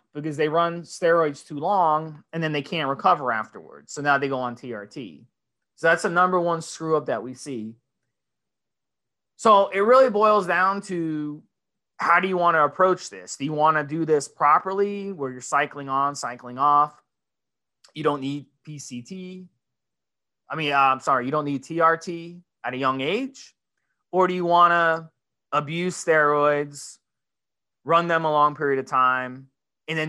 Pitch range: 130-170 Hz